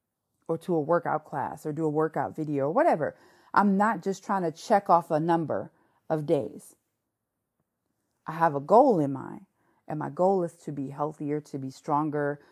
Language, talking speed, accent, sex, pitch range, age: English, 185 wpm, American, female, 150-215 Hz, 40-59